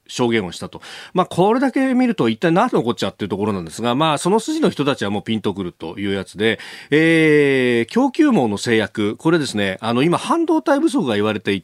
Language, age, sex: Japanese, 40-59, male